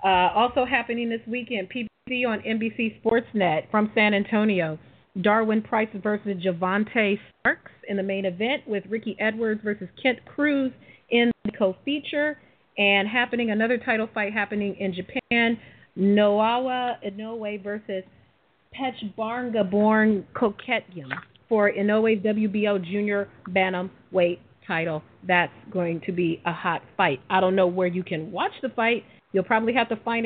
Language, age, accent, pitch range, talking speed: English, 40-59, American, 185-230 Hz, 140 wpm